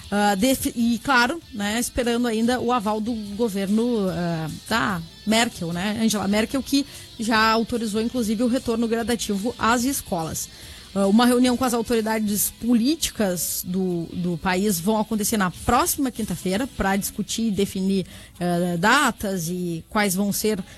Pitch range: 200-250 Hz